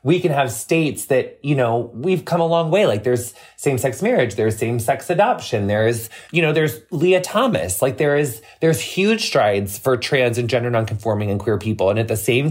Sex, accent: male, American